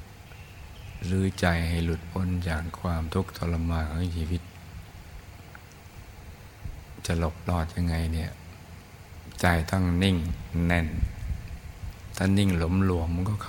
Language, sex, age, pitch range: Thai, male, 60-79, 85-95 Hz